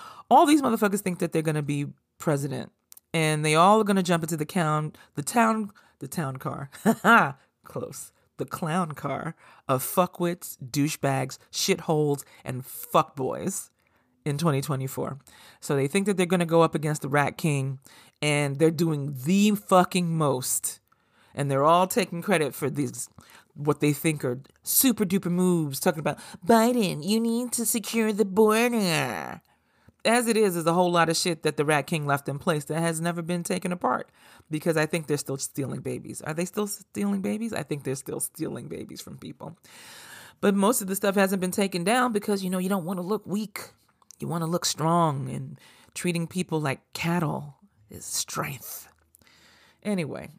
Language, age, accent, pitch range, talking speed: English, 40-59, American, 145-195 Hz, 180 wpm